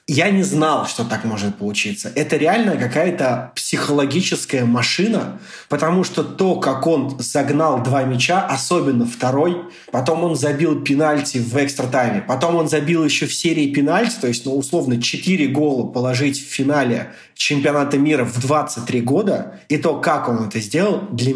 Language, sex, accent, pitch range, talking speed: Russian, male, native, 125-160 Hz, 155 wpm